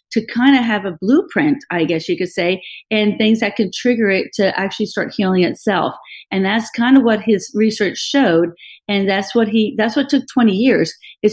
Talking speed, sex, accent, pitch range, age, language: 200 wpm, female, American, 200-250 Hz, 40-59, English